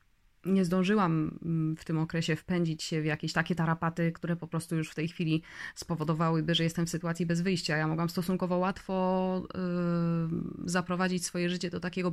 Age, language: 20-39, Polish